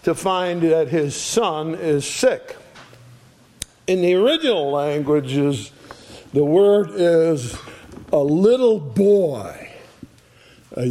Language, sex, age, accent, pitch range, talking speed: English, male, 50-69, American, 155-205 Hz, 100 wpm